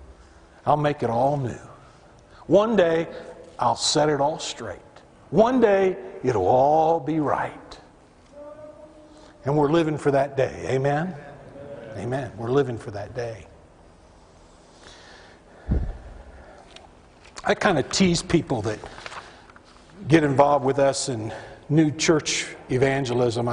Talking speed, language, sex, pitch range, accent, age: 115 wpm, English, male, 120-185 Hz, American, 60-79